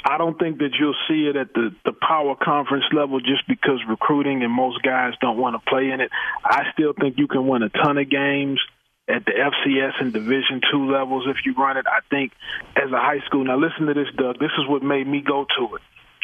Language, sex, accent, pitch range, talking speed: English, male, American, 135-155 Hz, 240 wpm